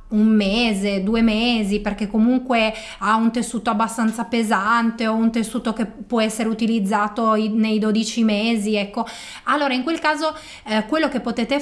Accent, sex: native, female